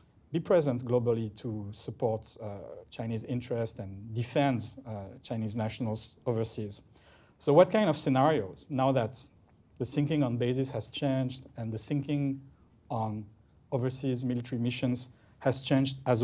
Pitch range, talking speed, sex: 115-135 Hz, 135 wpm, male